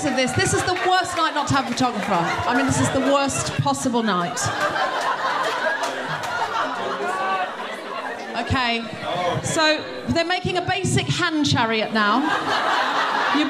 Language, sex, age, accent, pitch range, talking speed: English, female, 40-59, British, 255-370 Hz, 135 wpm